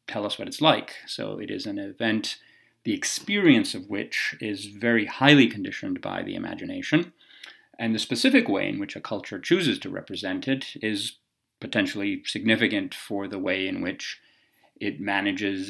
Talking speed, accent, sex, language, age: 165 wpm, American, male, English, 30-49